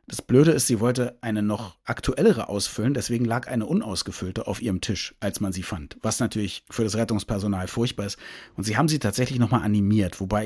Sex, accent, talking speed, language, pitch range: male, German, 200 wpm, German, 105-125 Hz